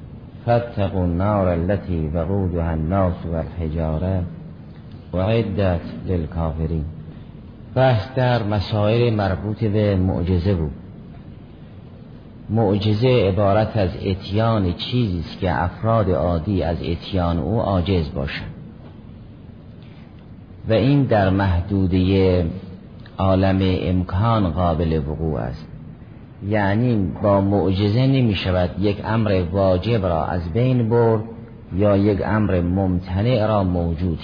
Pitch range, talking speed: 90-110 Hz, 100 wpm